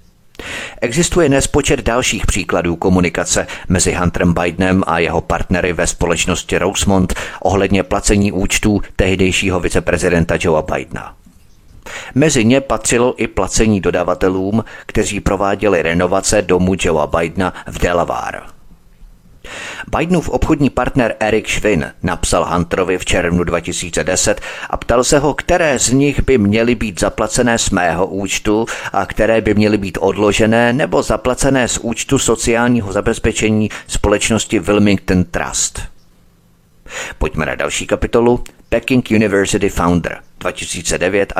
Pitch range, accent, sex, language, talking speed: 90-115 Hz, native, male, Czech, 120 wpm